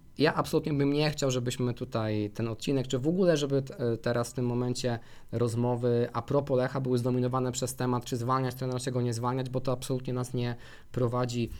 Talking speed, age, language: 195 wpm, 20-39, Polish